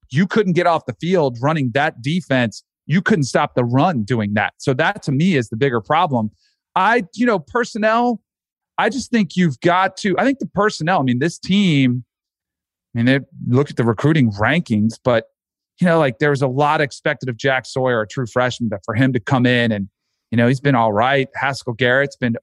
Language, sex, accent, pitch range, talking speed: English, male, American, 125-165 Hz, 215 wpm